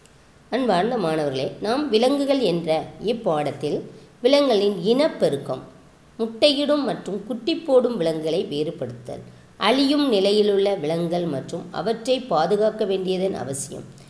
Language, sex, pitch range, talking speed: Tamil, female, 160-230 Hz, 100 wpm